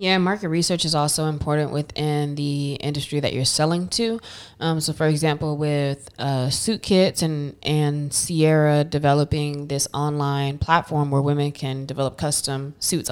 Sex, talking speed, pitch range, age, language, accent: female, 155 wpm, 145-165 Hz, 20-39, English, American